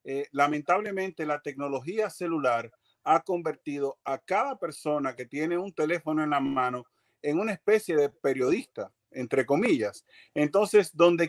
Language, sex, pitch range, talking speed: Spanish, male, 140-180 Hz, 140 wpm